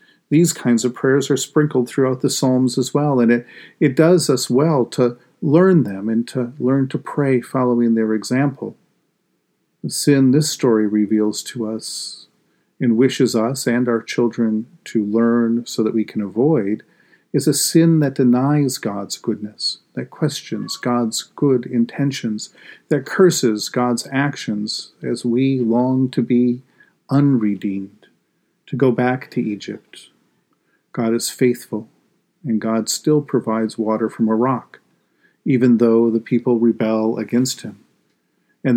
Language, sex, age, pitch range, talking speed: English, male, 40-59, 115-135 Hz, 145 wpm